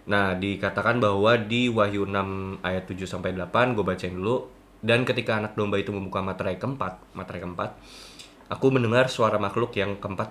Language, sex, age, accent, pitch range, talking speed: Indonesian, male, 20-39, native, 100-125 Hz, 150 wpm